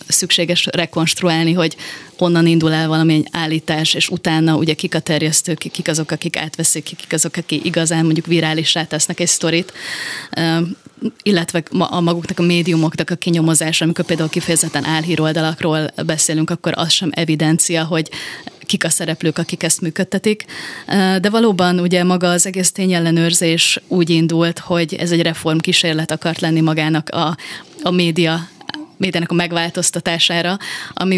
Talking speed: 140 wpm